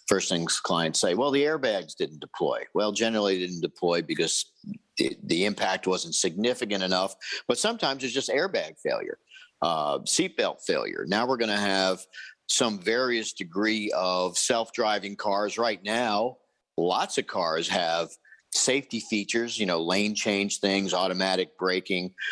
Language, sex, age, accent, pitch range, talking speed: English, male, 50-69, American, 100-135 Hz, 145 wpm